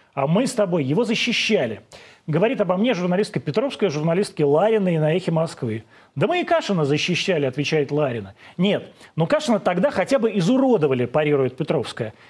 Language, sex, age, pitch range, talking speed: Russian, male, 30-49, 150-210 Hz, 155 wpm